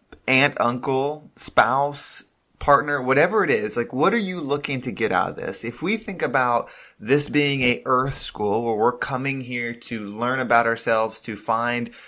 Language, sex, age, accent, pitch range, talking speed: English, male, 20-39, American, 115-140 Hz, 180 wpm